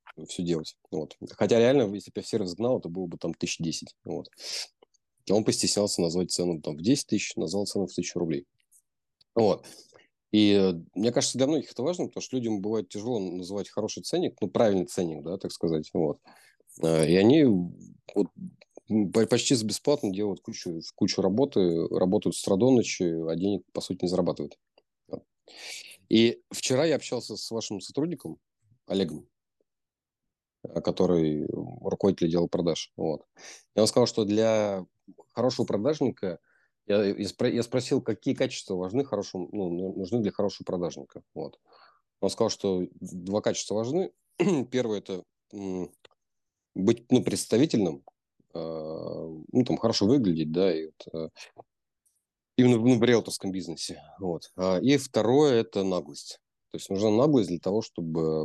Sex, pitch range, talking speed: male, 85-115 Hz, 145 wpm